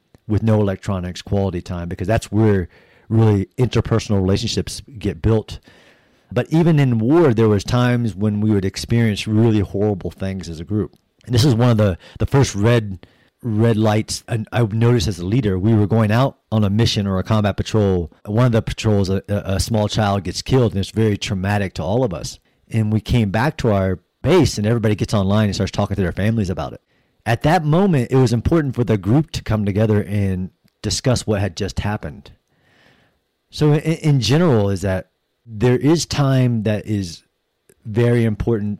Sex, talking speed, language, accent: male, 190 wpm, English, American